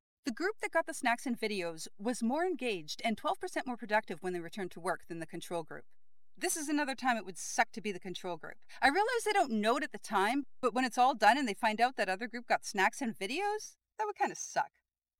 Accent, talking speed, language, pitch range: American, 260 wpm, English, 215-330 Hz